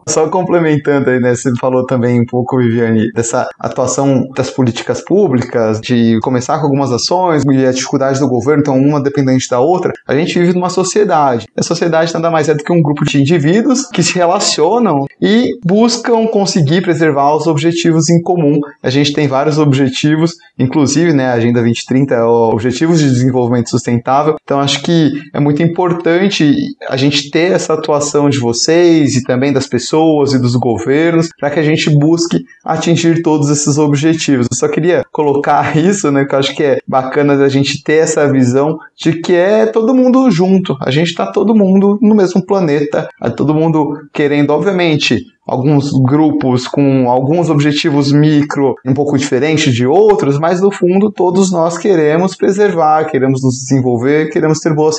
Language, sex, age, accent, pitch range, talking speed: Portuguese, male, 20-39, Brazilian, 135-165 Hz, 175 wpm